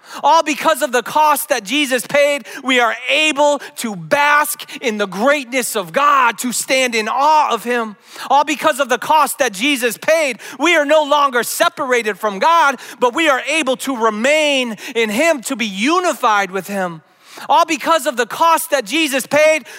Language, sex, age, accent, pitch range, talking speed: English, male, 30-49, American, 230-295 Hz, 180 wpm